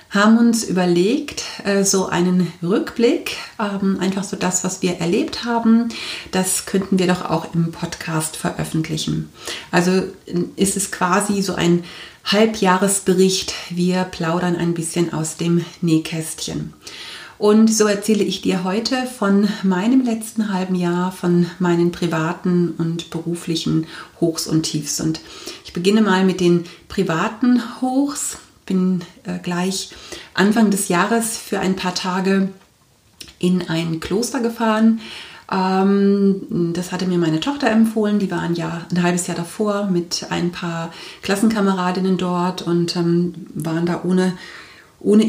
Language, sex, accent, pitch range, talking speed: German, female, German, 175-200 Hz, 135 wpm